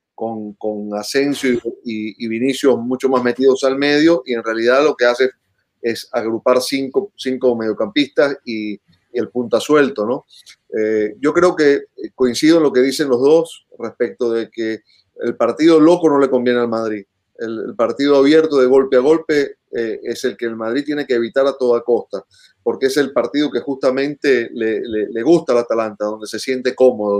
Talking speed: 190 wpm